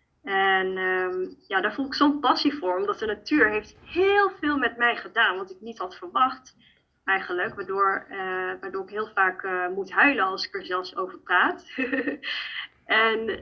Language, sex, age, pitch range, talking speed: Dutch, female, 20-39, 195-280 Hz, 165 wpm